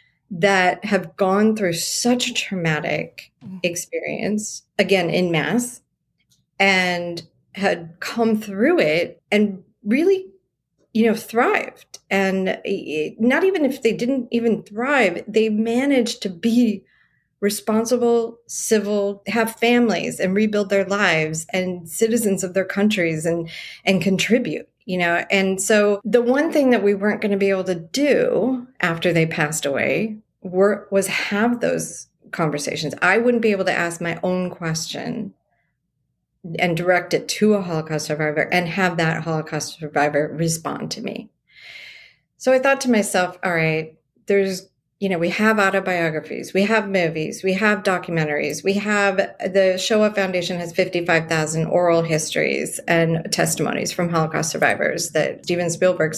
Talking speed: 145 wpm